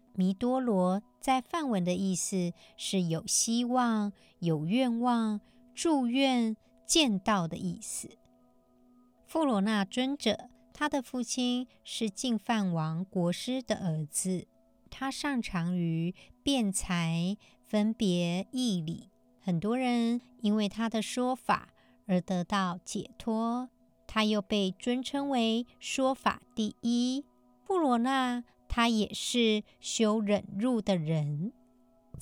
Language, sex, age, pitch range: Chinese, male, 50-69, 185-245 Hz